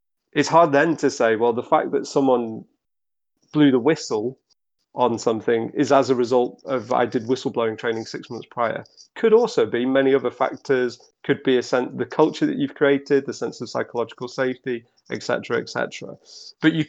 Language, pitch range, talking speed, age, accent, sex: English, 120-155 Hz, 190 wpm, 30-49, British, male